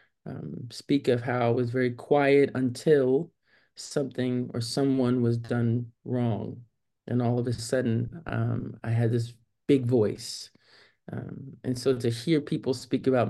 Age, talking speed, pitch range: 20-39, 155 wpm, 115-140 Hz